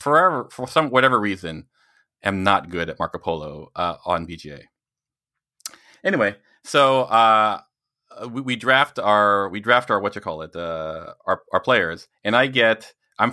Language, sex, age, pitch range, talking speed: English, male, 30-49, 95-120 Hz, 160 wpm